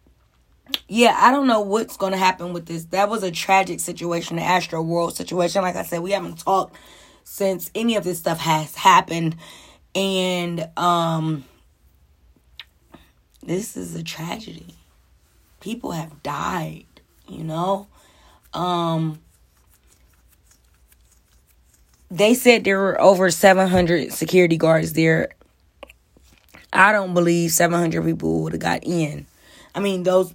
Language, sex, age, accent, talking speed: English, female, 20-39, American, 130 wpm